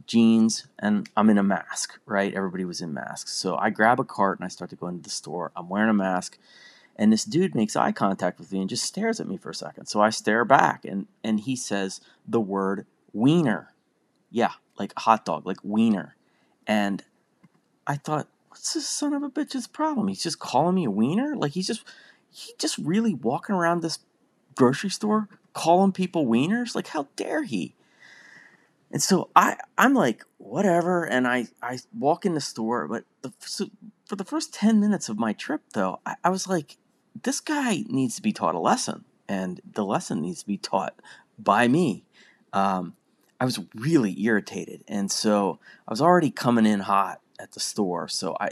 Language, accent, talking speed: English, American, 195 wpm